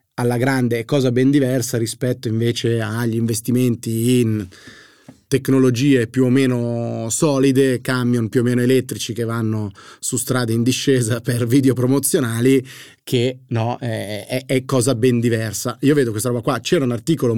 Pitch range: 120-140 Hz